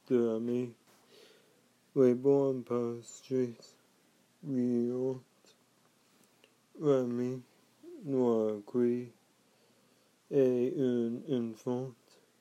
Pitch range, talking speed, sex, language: 115-130 Hz, 60 wpm, male, French